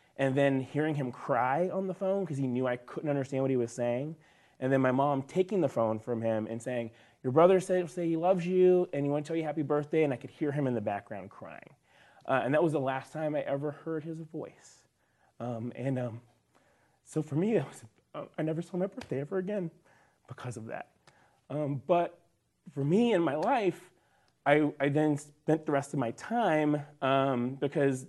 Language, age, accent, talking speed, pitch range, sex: English, 30-49, American, 215 wpm, 125-160 Hz, male